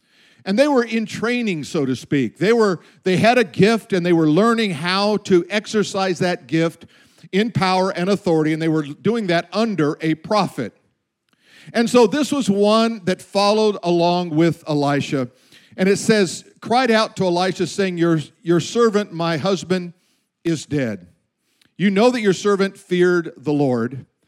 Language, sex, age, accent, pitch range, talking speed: English, male, 50-69, American, 170-220 Hz, 170 wpm